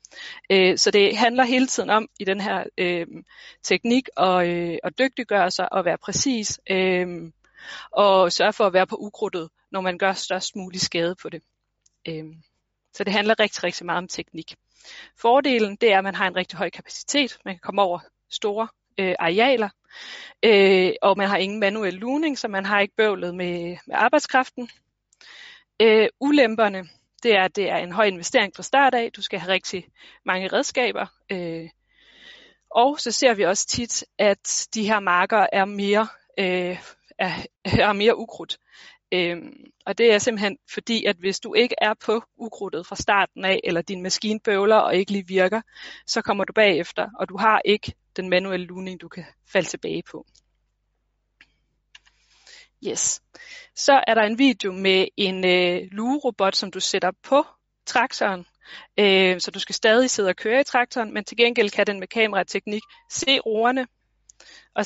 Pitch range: 185-230 Hz